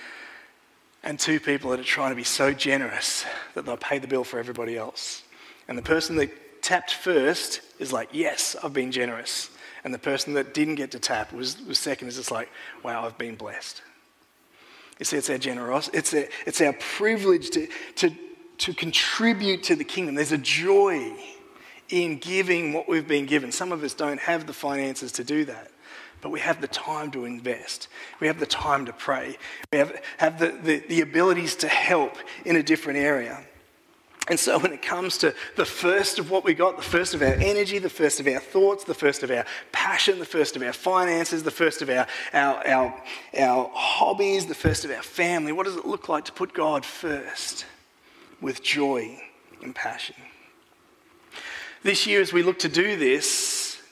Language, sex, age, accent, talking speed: English, male, 30-49, Australian, 195 wpm